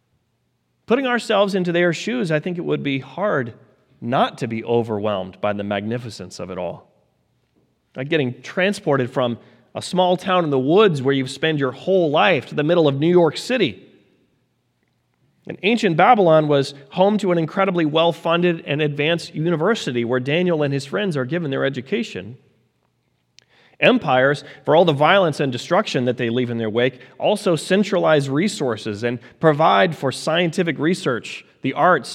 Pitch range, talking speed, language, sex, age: 125-175 Hz, 165 wpm, English, male, 30-49